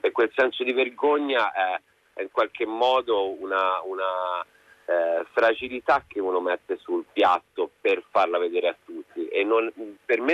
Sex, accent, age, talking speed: male, native, 40-59, 155 wpm